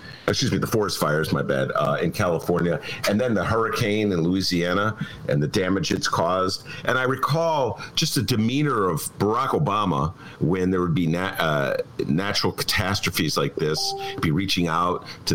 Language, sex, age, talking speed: English, male, 50-69, 170 wpm